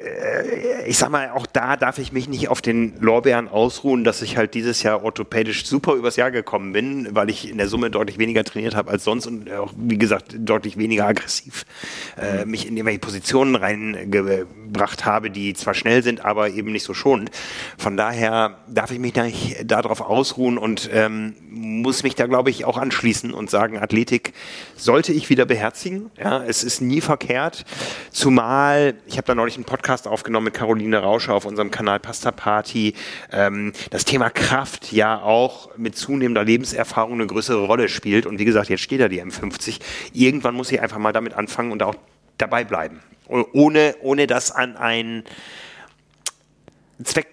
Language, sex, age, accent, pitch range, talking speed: German, male, 30-49, German, 110-125 Hz, 175 wpm